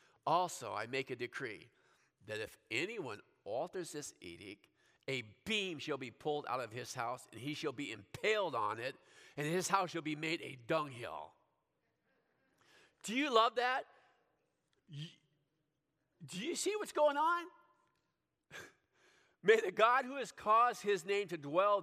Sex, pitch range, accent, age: male, 145-200 Hz, American, 50-69